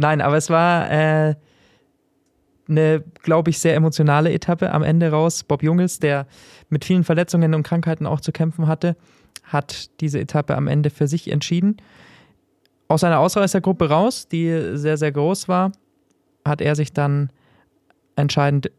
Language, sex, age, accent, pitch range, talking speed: German, male, 20-39, German, 140-160 Hz, 155 wpm